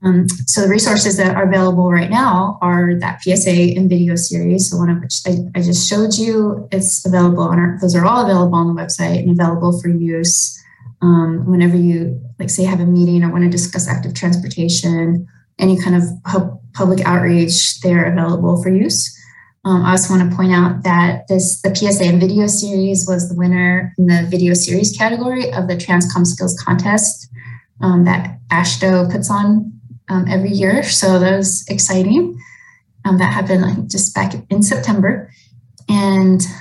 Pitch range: 175-190 Hz